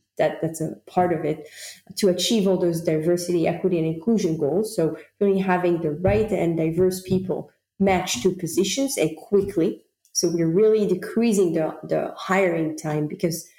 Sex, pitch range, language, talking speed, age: female, 165-200 Hz, English, 165 wpm, 30-49